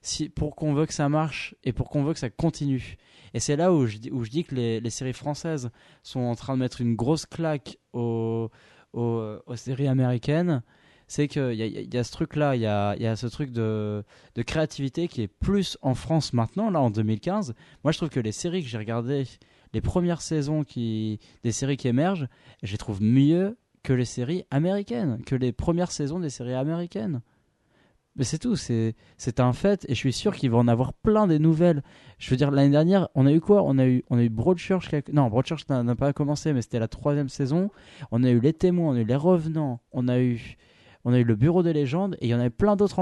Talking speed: 245 wpm